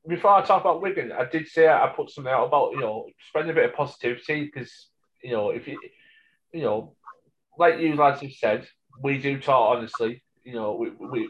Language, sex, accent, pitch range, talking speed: English, male, British, 125-185 Hz, 205 wpm